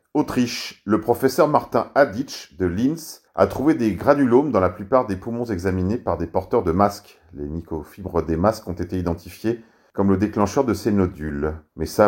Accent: French